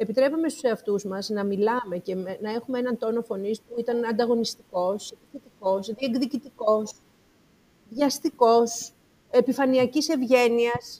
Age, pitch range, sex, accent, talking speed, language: 40-59, 210-250 Hz, female, native, 110 wpm, Greek